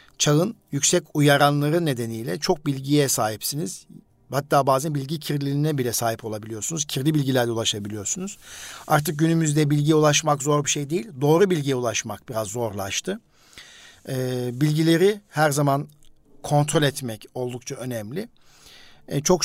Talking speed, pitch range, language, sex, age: 115 wpm, 130-160 Hz, Turkish, male, 50-69